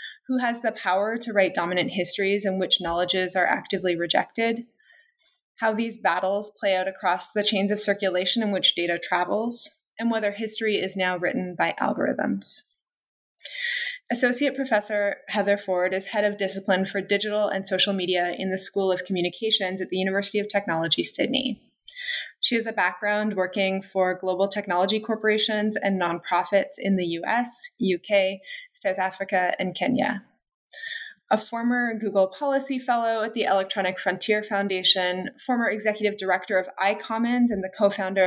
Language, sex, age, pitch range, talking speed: English, female, 20-39, 190-230 Hz, 155 wpm